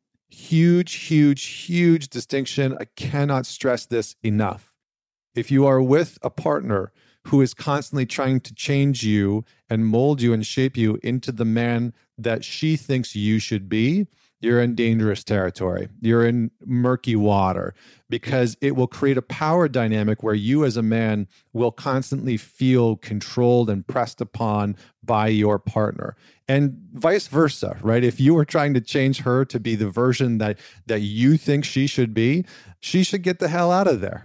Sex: male